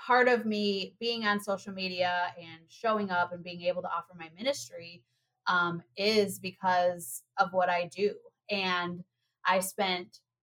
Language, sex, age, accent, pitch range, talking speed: English, female, 20-39, American, 175-200 Hz, 155 wpm